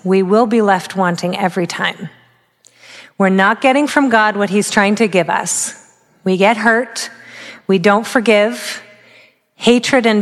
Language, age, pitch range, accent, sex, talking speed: English, 40-59, 185-225 Hz, American, female, 155 wpm